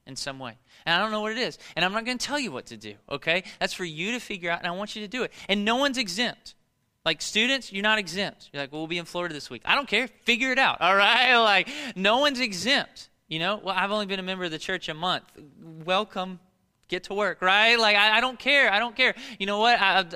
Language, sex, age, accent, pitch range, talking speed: English, male, 20-39, American, 175-230 Hz, 280 wpm